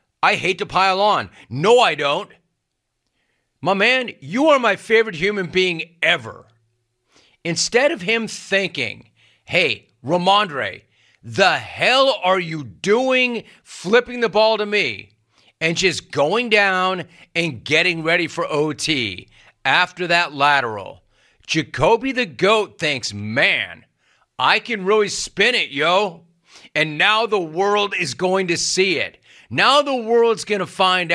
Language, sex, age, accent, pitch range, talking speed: English, male, 40-59, American, 160-210 Hz, 135 wpm